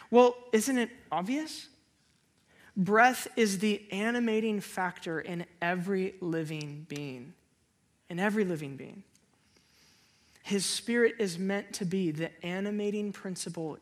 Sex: male